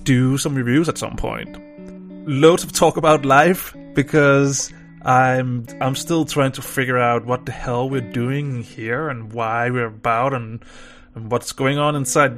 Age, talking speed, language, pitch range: 20-39, 170 wpm, English, 120-150 Hz